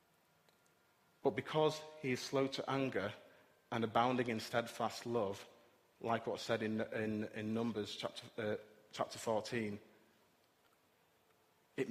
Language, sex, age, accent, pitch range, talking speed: English, male, 30-49, British, 105-120 Hz, 120 wpm